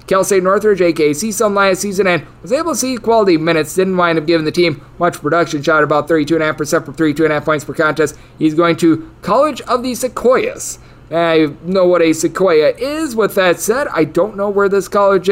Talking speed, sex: 205 wpm, male